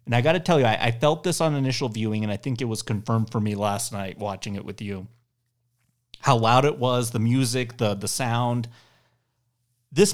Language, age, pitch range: English, 30-49, 115-140 Hz